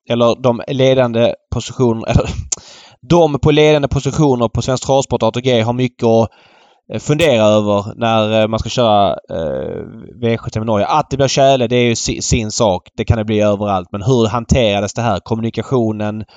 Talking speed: 160 wpm